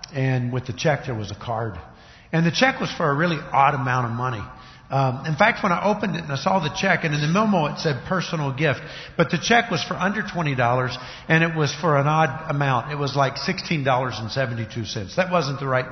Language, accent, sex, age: English, American, male, 50-69